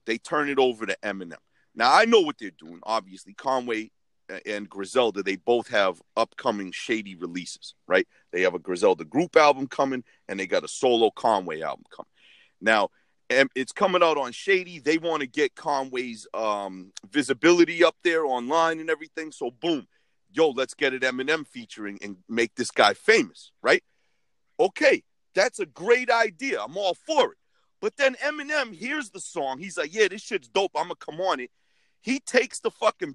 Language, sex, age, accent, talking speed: English, male, 40-59, American, 185 wpm